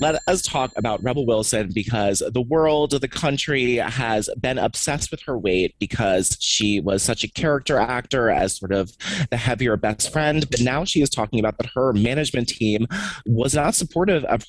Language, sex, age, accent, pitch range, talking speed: English, male, 30-49, American, 105-150 Hz, 195 wpm